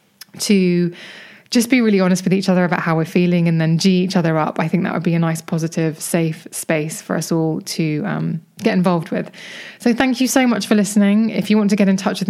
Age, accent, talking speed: 20-39, British, 250 wpm